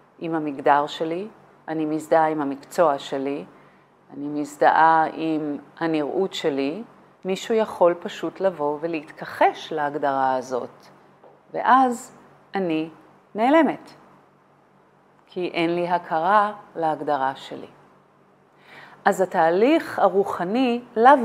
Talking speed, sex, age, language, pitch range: 95 wpm, female, 40-59, Hebrew, 155-195 Hz